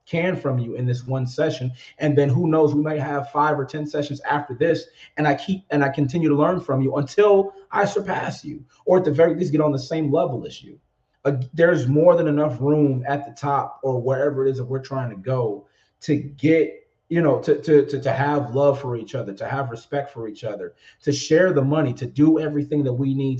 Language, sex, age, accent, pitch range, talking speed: English, male, 30-49, American, 130-150 Hz, 240 wpm